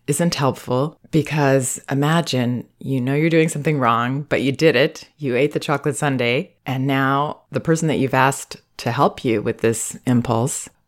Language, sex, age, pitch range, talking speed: English, female, 30-49, 125-155 Hz, 175 wpm